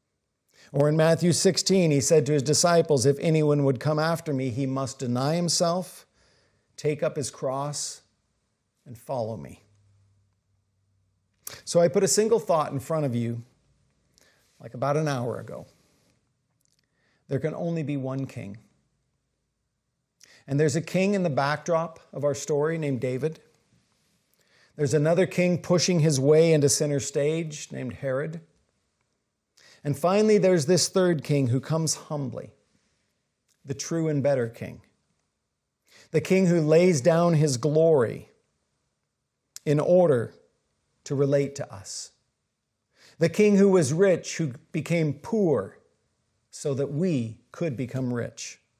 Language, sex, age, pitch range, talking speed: English, male, 50-69, 135-175 Hz, 135 wpm